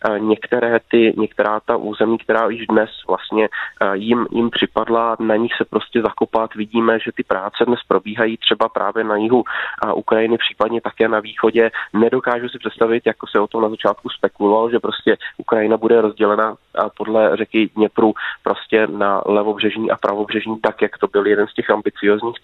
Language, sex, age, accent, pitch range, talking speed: Czech, male, 20-39, native, 105-115 Hz, 170 wpm